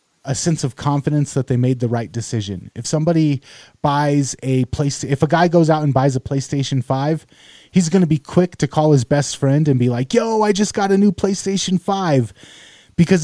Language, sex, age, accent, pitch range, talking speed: English, male, 20-39, American, 135-185 Hz, 215 wpm